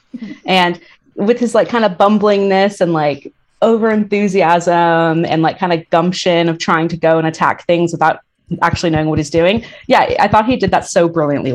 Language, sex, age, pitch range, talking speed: English, female, 20-39, 155-190 Hz, 190 wpm